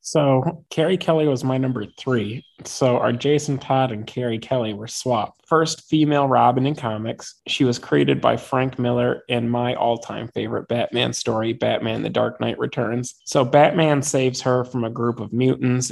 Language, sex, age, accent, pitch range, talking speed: English, male, 20-39, American, 115-130 Hz, 180 wpm